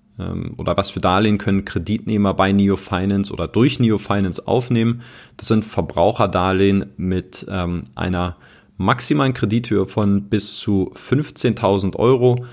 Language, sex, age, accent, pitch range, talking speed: German, male, 30-49, German, 95-120 Hz, 125 wpm